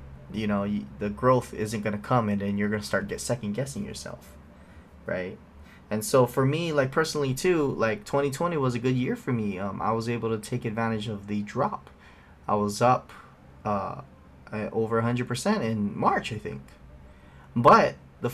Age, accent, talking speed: 20-39, American, 180 wpm